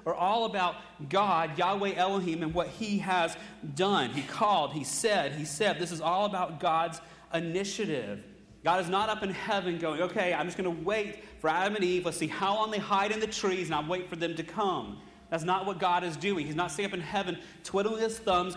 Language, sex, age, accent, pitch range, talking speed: English, male, 30-49, American, 150-195 Hz, 230 wpm